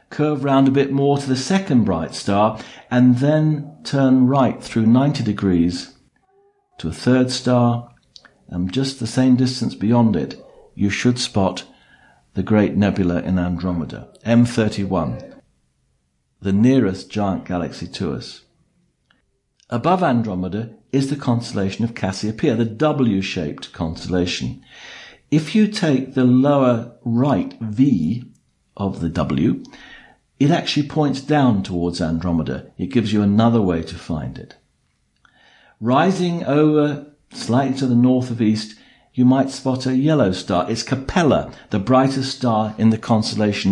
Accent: British